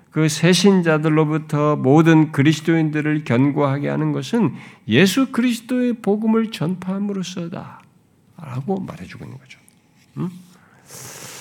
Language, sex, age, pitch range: Korean, male, 50-69, 145-215 Hz